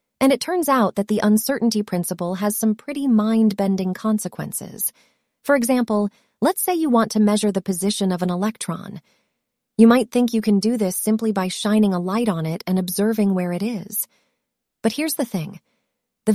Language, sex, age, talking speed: English, female, 30-49, 185 wpm